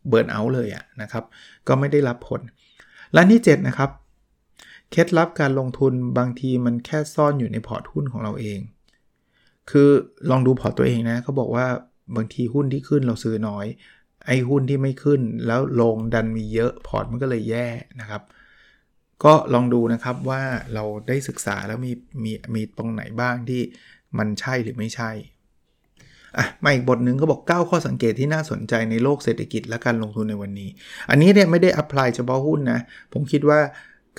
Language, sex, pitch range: Thai, male, 115-140 Hz